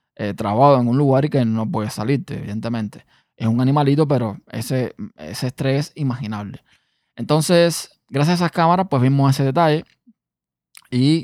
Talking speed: 160 wpm